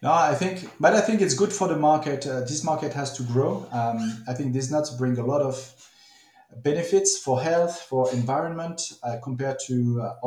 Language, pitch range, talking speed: English, 125-150 Hz, 205 wpm